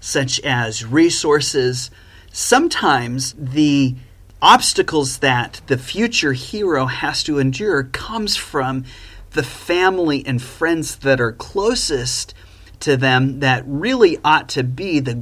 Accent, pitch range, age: American, 110-160 Hz, 30-49